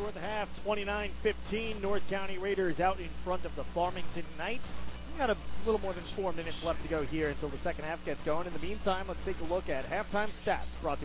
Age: 30-49